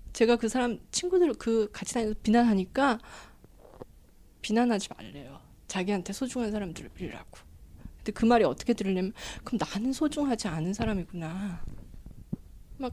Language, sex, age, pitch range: Korean, female, 20-39, 205-300 Hz